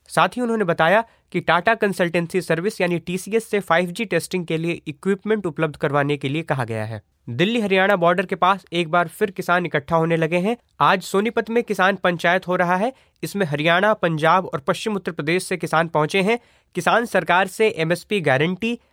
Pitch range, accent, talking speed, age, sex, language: 160-200 Hz, native, 190 wpm, 30-49, male, Hindi